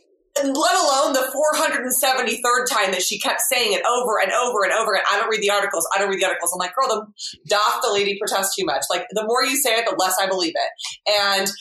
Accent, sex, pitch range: American, female, 185-255 Hz